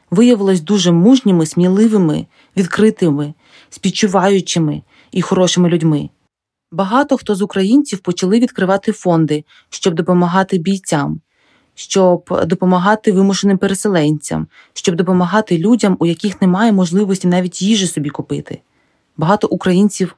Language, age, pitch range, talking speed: Ukrainian, 20-39, 170-205 Hz, 105 wpm